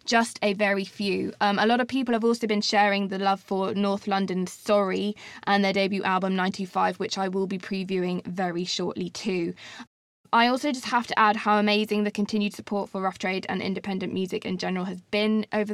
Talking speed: 205 wpm